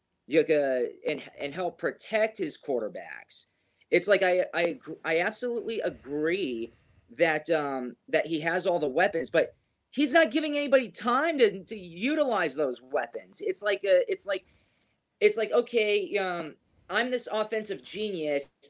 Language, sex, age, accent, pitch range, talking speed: English, male, 30-49, American, 155-240 Hz, 150 wpm